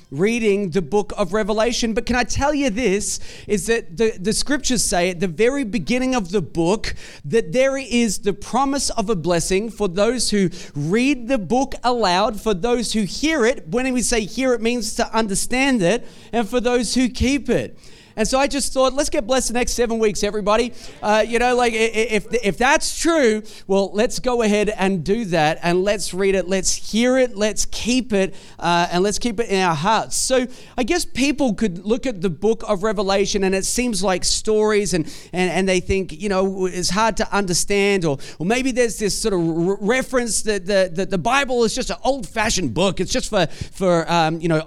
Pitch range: 190-240 Hz